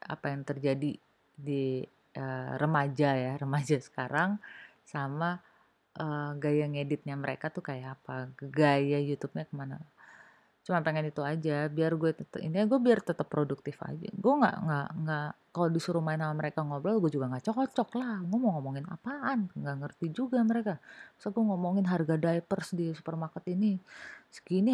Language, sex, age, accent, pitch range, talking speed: Indonesian, female, 30-49, native, 155-210 Hz, 160 wpm